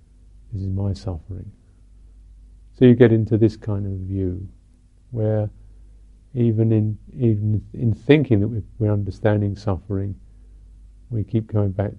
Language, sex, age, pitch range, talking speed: English, male, 50-69, 90-110 Hz, 125 wpm